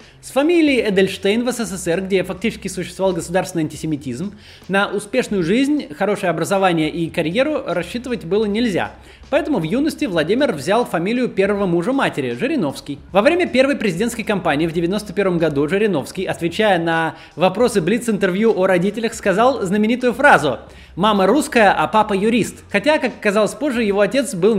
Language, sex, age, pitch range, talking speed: Russian, male, 20-39, 165-230 Hz, 145 wpm